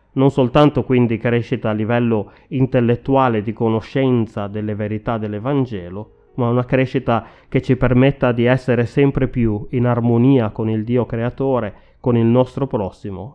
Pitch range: 105-130 Hz